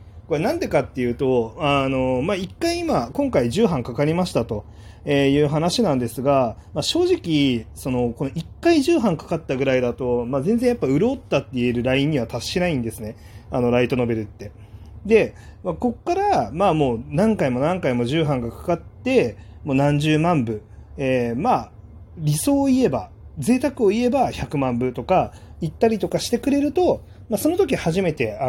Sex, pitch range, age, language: male, 120-195 Hz, 30-49, Japanese